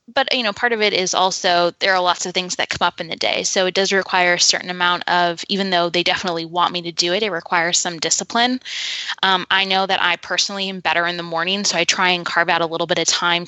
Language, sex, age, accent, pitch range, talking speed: English, female, 10-29, American, 175-195 Hz, 275 wpm